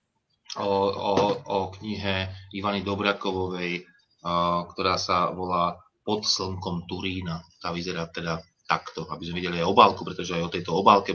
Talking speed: 140 wpm